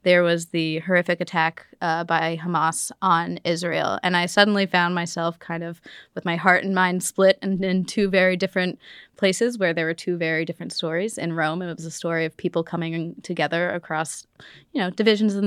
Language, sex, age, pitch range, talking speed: English, female, 20-39, 170-185 Hz, 200 wpm